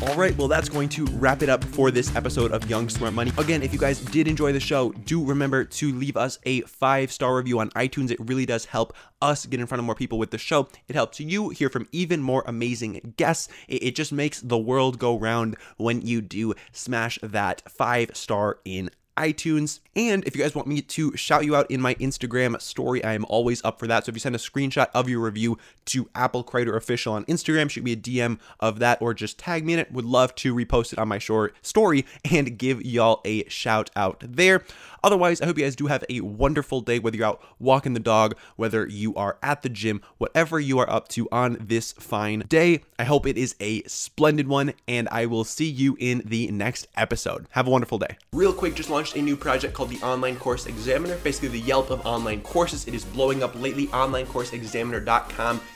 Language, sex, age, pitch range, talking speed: English, male, 20-39, 115-145 Hz, 225 wpm